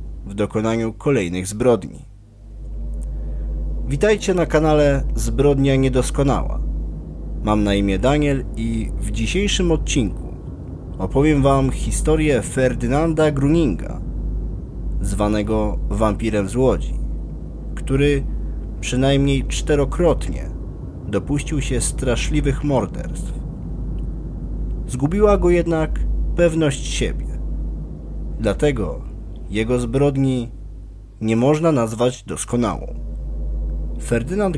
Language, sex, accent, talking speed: Polish, male, native, 80 wpm